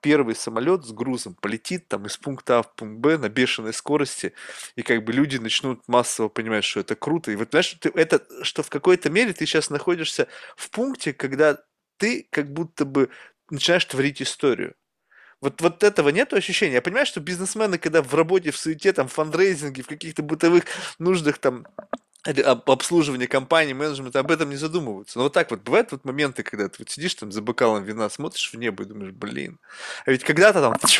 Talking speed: 195 wpm